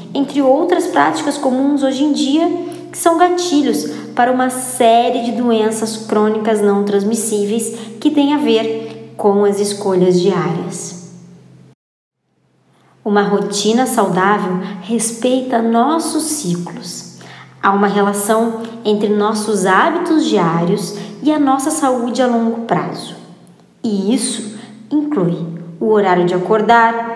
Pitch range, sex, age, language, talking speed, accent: 205-270 Hz, male, 20-39, Portuguese, 115 wpm, Brazilian